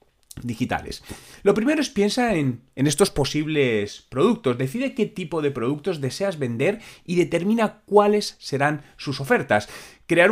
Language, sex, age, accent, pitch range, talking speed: Spanish, male, 30-49, Spanish, 130-195 Hz, 140 wpm